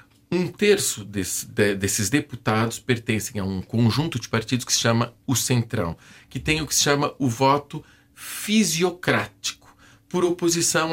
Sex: male